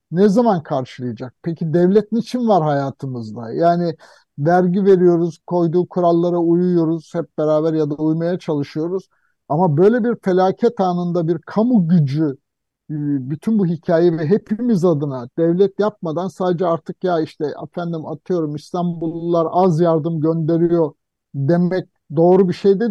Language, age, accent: Turkish, 60-79, native